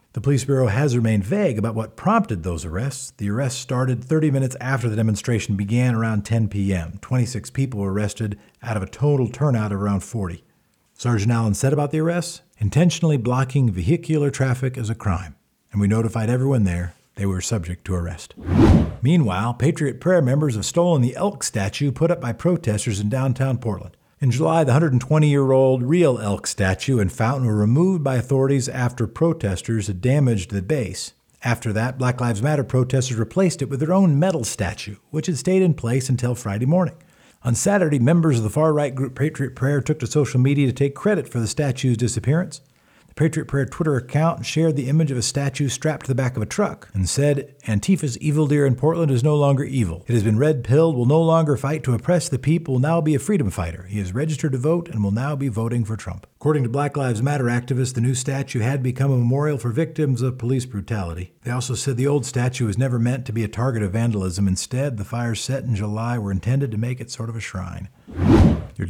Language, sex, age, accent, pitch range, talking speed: English, male, 50-69, American, 110-145 Hz, 210 wpm